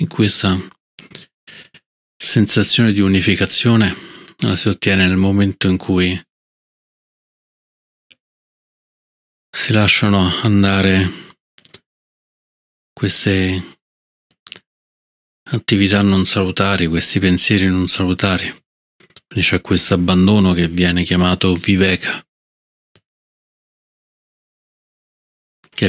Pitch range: 90-100 Hz